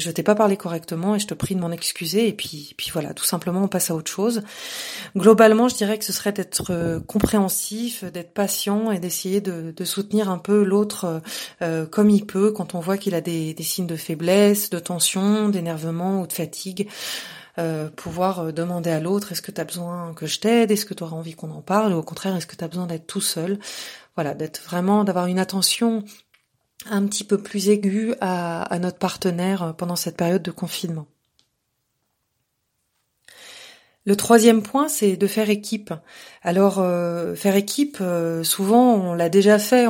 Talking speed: 195 wpm